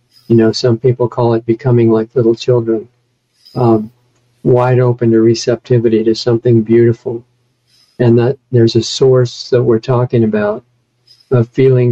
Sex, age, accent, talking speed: male, 50-69, American, 145 wpm